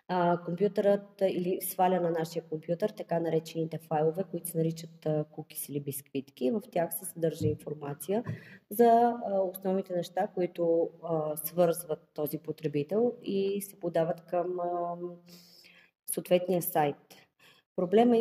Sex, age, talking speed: female, 20-39, 110 wpm